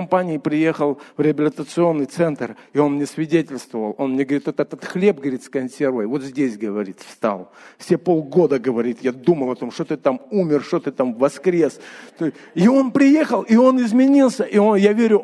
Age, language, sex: 40-59, Russian, male